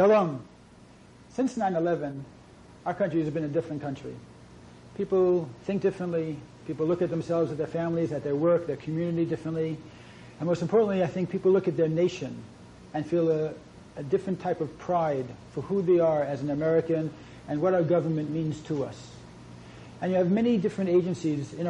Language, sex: English, male